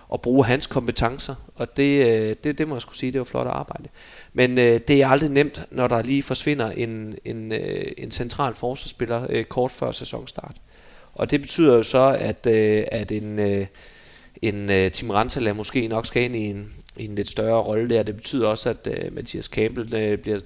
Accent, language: native, Danish